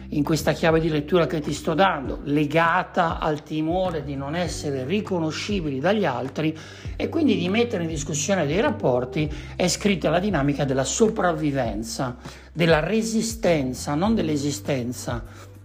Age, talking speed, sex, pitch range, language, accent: 60-79, 140 wpm, male, 140-180 Hz, Italian, native